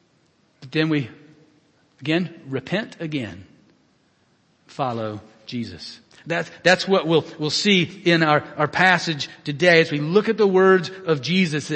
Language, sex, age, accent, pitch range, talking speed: English, male, 50-69, American, 160-230 Hz, 135 wpm